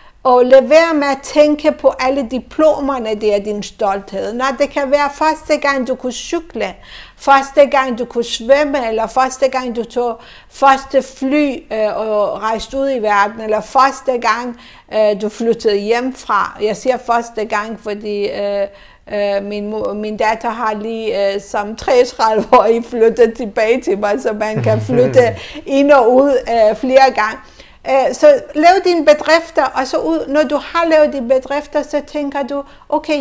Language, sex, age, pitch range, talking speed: Danish, female, 60-79, 215-280 Hz, 170 wpm